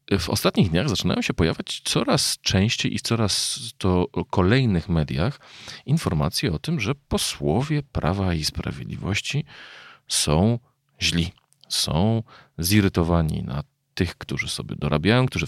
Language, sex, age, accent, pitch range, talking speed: Polish, male, 40-59, native, 85-105 Hz, 120 wpm